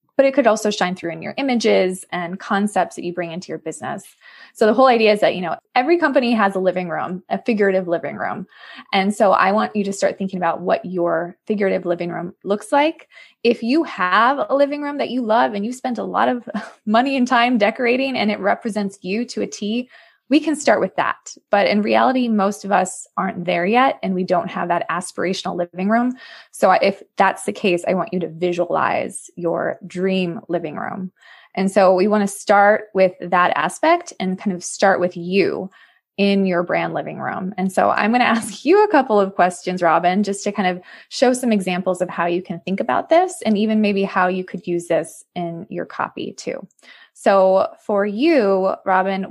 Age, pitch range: 20-39, 180-240 Hz